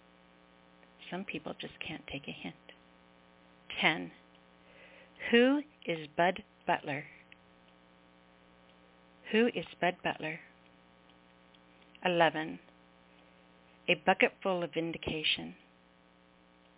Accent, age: American, 50-69